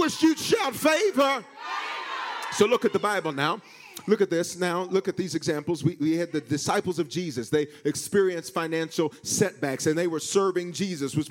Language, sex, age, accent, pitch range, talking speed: English, male, 40-59, American, 160-195 Hz, 185 wpm